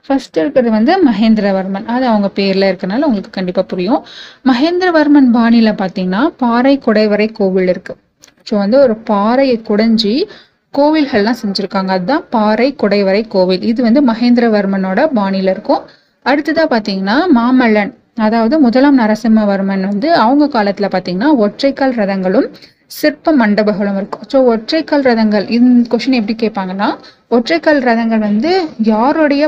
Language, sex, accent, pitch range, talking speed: Tamil, female, native, 200-270 Hz, 120 wpm